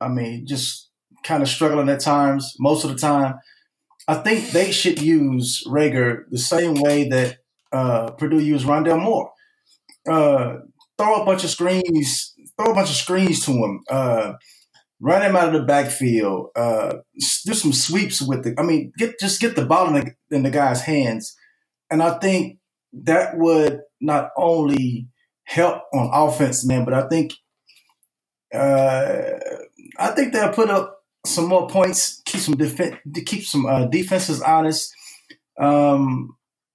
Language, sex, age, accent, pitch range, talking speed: English, male, 20-39, American, 125-170 Hz, 160 wpm